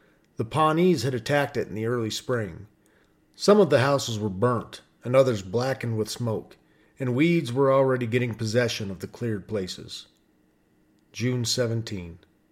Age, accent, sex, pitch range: 40-59, American, male, 110-145 Hz